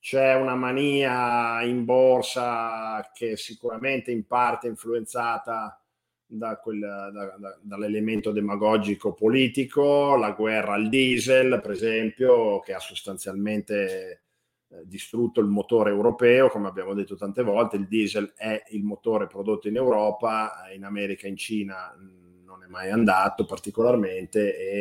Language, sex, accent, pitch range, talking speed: Italian, male, native, 105-130 Hz, 135 wpm